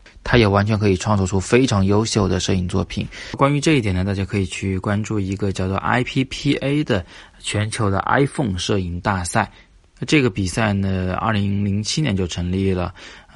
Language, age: Chinese, 20-39